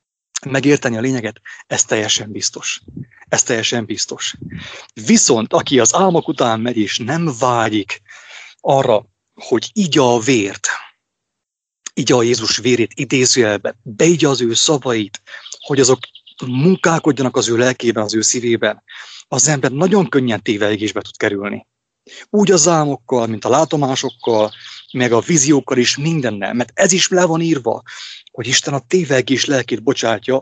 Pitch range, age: 115-145 Hz, 30-49